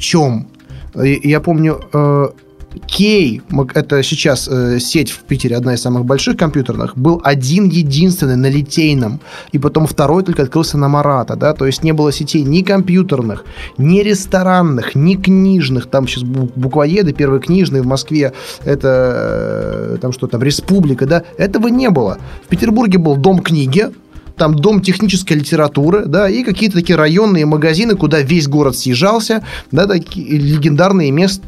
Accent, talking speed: native, 145 wpm